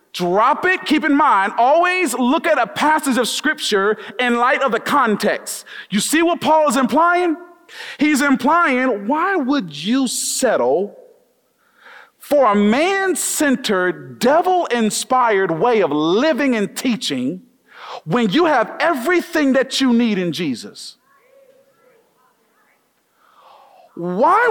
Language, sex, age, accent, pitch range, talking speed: English, male, 40-59, American, 255-360 Hz, 120 wpm